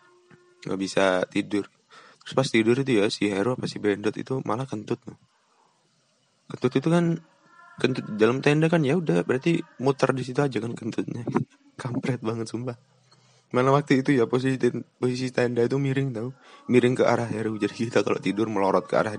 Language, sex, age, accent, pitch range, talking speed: Indonesian, male, 20-39, native, 100-135 Hz, 180 wpm